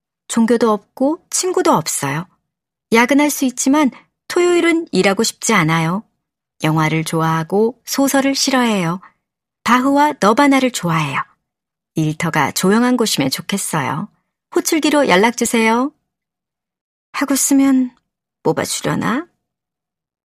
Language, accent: Korean, native